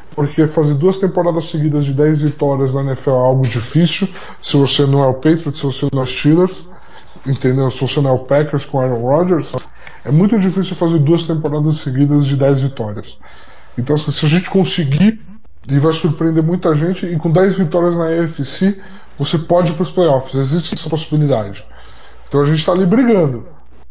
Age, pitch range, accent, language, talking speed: 20-39, 140-180 Hz, Brazilian, Portuguese, 195 wpm